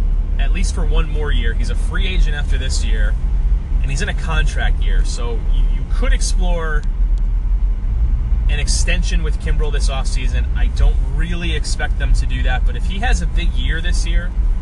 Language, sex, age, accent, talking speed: English, male, 30-49, American, 190 wpm